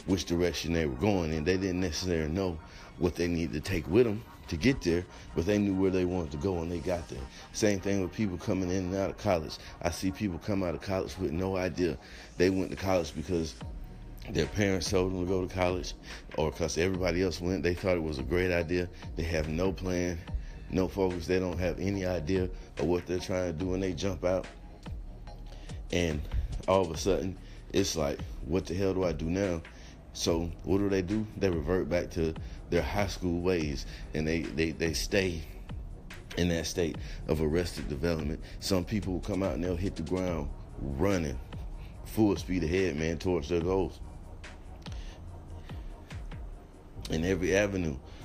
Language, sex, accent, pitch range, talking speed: English, male, American, 80-95 Hz, 195 wpm